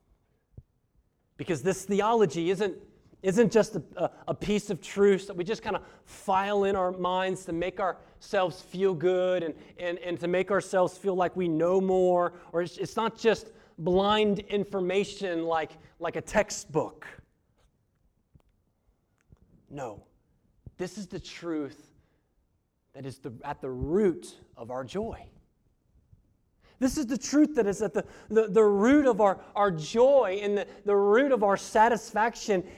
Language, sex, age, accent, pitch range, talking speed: English, male, 30-49, American, 180-255 Hz, 150 wpm